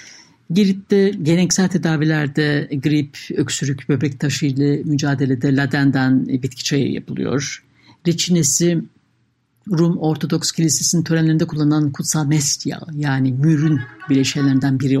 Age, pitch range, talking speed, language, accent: 60-79, 140-175 Hz, 105 wpm, Turkish, native